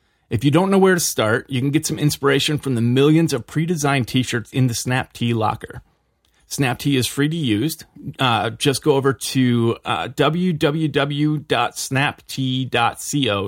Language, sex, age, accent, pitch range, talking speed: English, male, 30-49, American, 110-145 Hz, 160 wpm